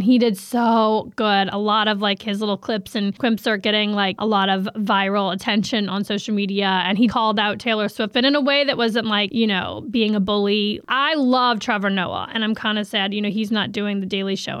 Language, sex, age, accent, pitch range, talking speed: English, female, 20-39, American, 220-270 Hz, 240 wpm